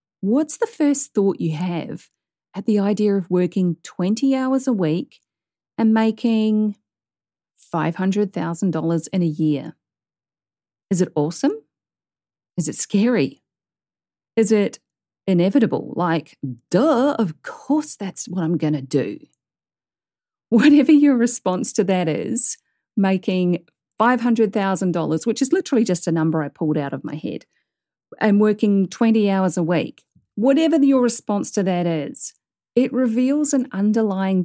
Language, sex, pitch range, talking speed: English, female, 170-225 Hz, 130 wpm